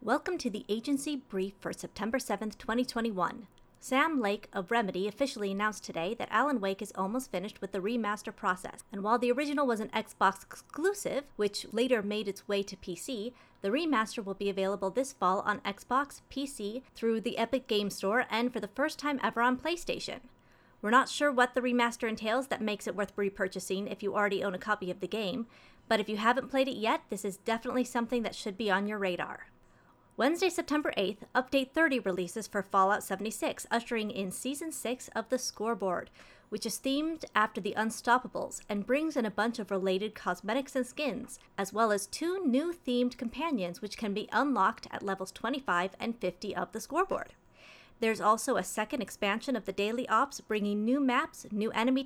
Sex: female